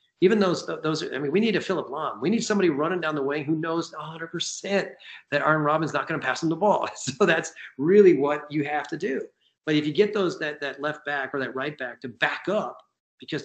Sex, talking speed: male, 250 wpm